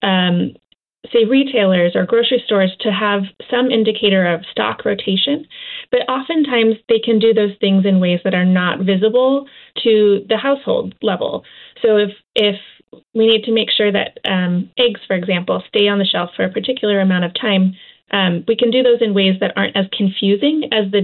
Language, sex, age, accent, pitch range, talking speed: English, female, 30-49, American, 190-230 Hz, 190 wpm